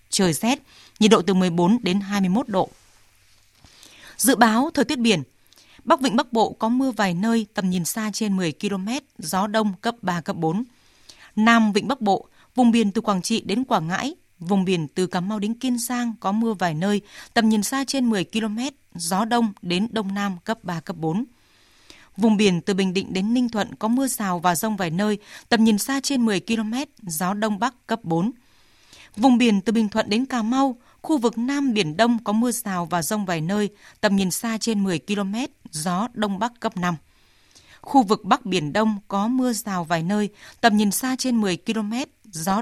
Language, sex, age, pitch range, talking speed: Vietnamese, female, 20-39, 190-235 Hz, 205 wpm